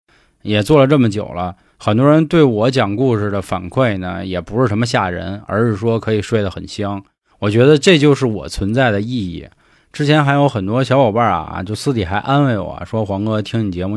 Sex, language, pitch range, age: male, Chinese, 100-130 Hz, 20-39